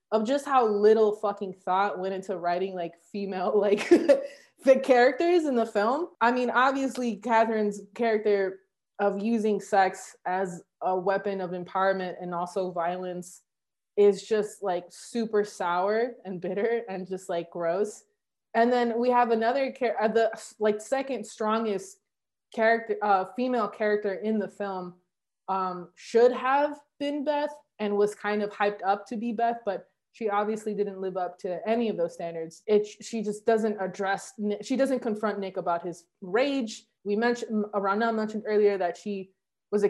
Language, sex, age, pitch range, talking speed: English, female, 20-39, 190-230 Hz, 160 wpm